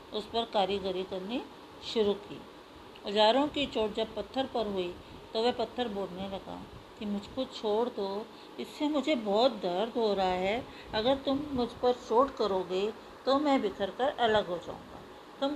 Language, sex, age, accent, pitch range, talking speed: Hindi, female, 50-69, native, 205-250 Hz, 165 wpm